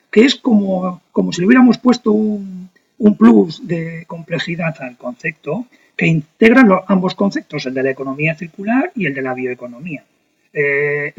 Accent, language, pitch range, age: Spanish, Spanish, 140-200 Hz, 40-59